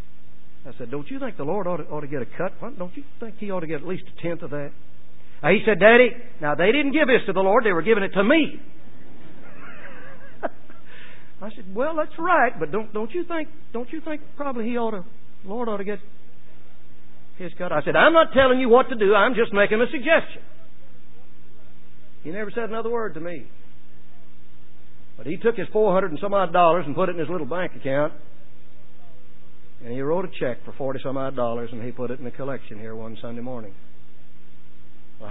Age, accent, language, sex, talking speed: 60-79, American, English, male, 215 wpm